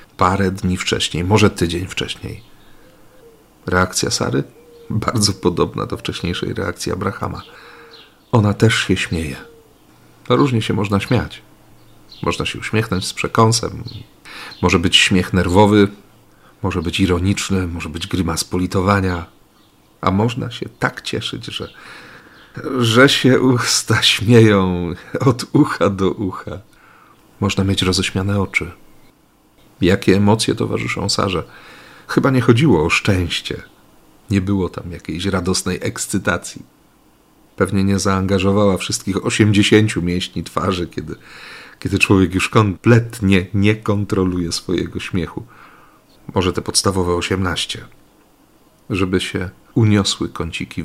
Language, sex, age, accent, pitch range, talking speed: Polish, male, 40-59, native, 90-105 Hz, 110 wpm